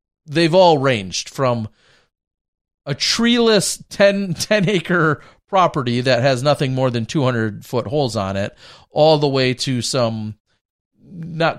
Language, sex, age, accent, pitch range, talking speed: English, male, 40-59, American, 115-145 Hz, 140 wpm